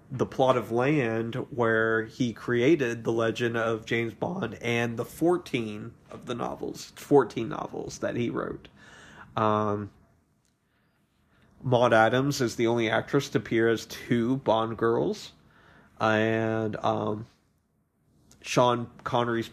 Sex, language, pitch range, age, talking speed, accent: male, English, 110-130 Hz, 30-49, 125 wpm, American